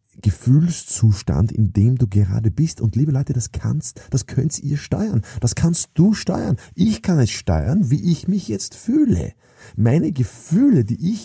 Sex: male